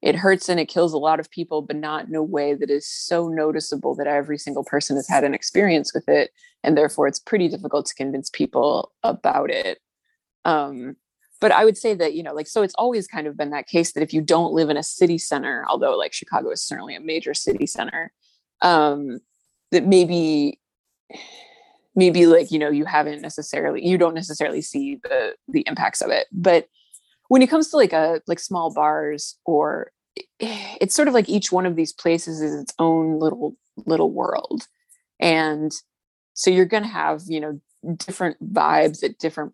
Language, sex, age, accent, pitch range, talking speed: English, female, 20-39, American, 150-200 Hz, 195 wpm